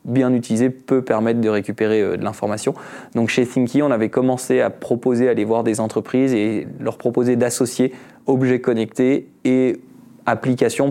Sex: male